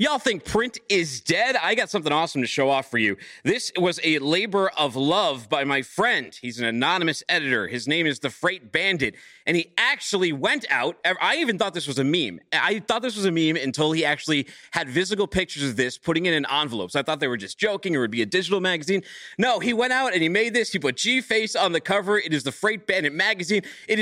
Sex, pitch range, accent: male, 160-230 Hz, American